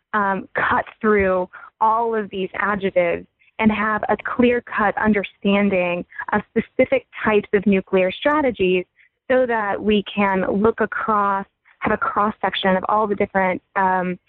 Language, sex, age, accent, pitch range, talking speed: English, female, 20-39, American, 195-225 Hz, 135 wpm